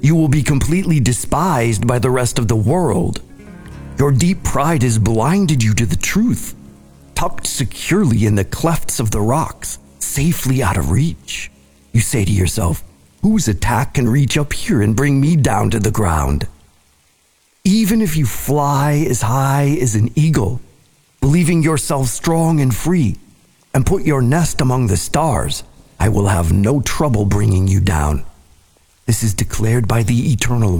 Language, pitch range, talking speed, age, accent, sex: English, 105-145 Hz, 165 wpm, 50-69, American, male